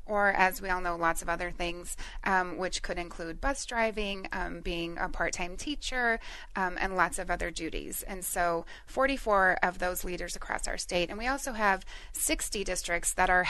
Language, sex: English, female